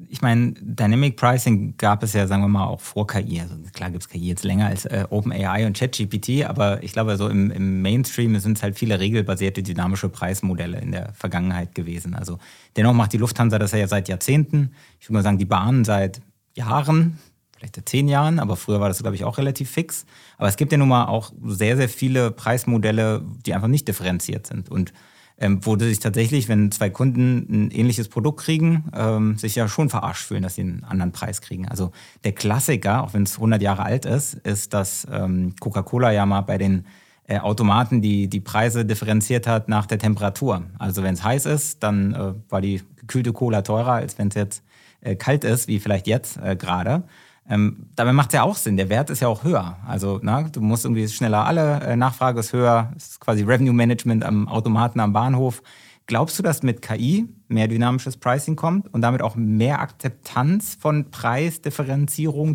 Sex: male